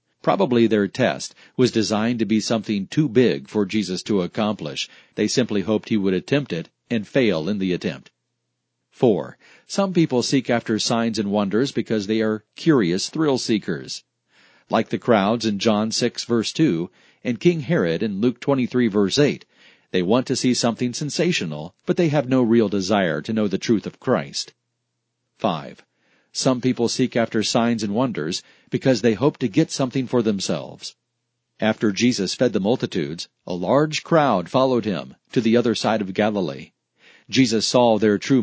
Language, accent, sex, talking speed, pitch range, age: English, American, male, 170 wpm, 105-130 Hz, 50-69